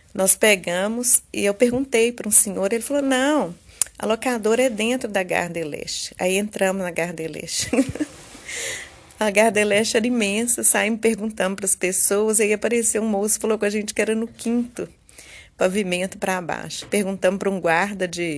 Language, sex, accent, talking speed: Portuguese, female, Brazilian, 165 wpm